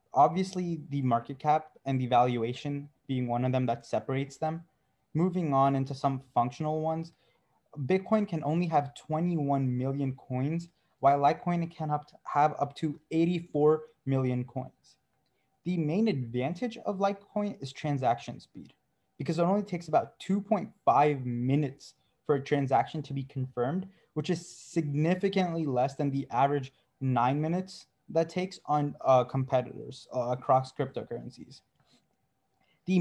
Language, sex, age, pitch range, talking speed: English, male, 20-39, 130-165 Hz, 140 wpm